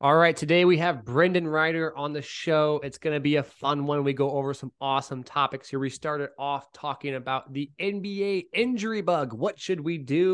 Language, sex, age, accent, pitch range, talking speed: English, male, 20-39, American, 140-180 Hz, 210 wpm